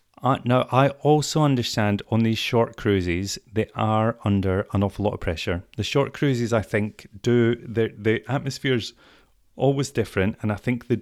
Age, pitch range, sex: 30-49, 100-120 Hz, male